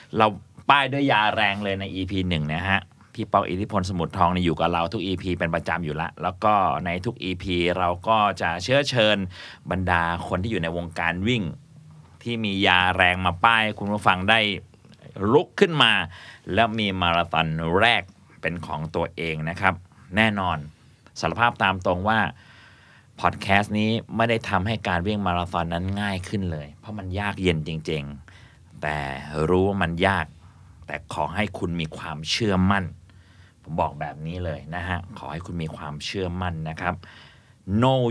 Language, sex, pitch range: Thai, male, 85-105 Hz